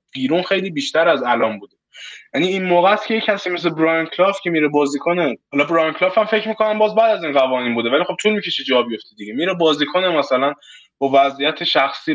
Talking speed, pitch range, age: 220 wpm, 145-205 Hz, 20-39